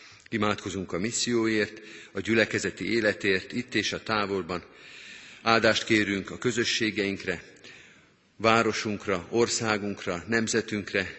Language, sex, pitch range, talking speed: Hungarian, male, 100-110 Hz, 90 wpm